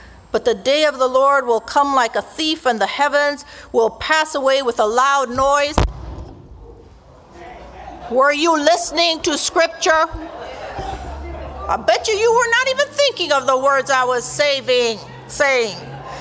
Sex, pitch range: female, 245-330 Hz